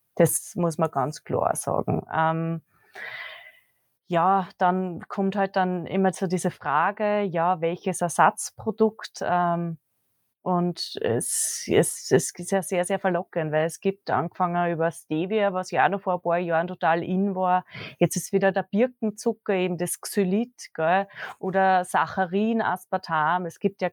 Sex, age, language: female, 20-39, English